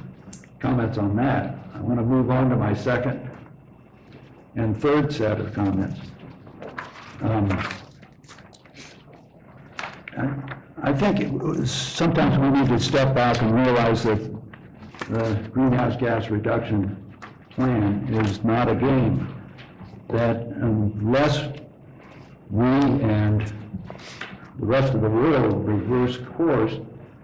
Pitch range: 110-135 Hz